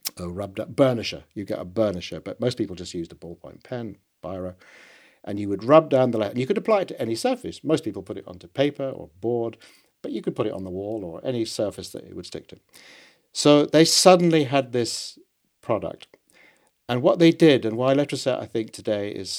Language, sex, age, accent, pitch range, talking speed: English, male, 50-69, British, 105-130 Hz, 225 wpm